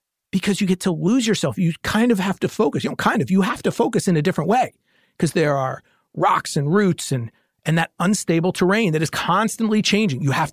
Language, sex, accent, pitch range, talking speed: English, male, American, 145-200 Hz, 235 wpm